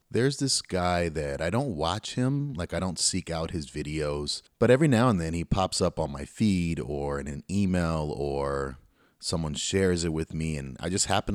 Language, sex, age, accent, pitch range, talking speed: English, male, 30-49, American, 75-100 Hz, 210 wpm